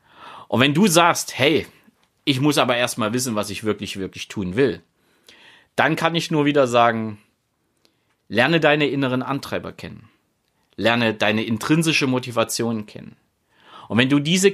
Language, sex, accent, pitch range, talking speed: German, male, German, 105-135 Hz, 150 wpm